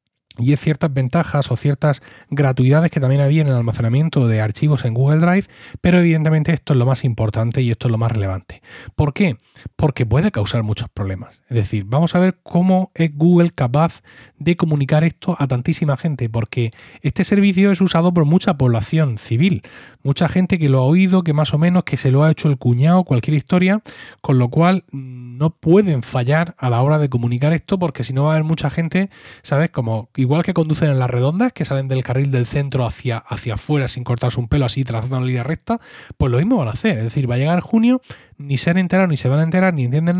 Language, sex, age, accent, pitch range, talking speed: Spanish, male, 30-49, Spanish, 125-165 Hz, 225 wpm